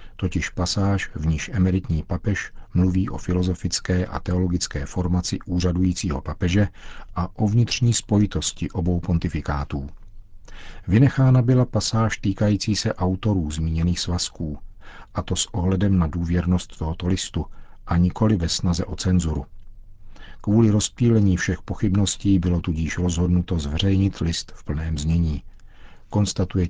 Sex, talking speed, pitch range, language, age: male, 125 wpm, 85-100 Hz, Czech, 50-69